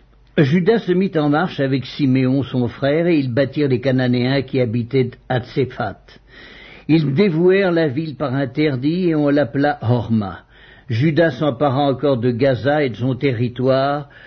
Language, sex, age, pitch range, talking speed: English, male, 60-79, 125-155 Hz, 150 wpm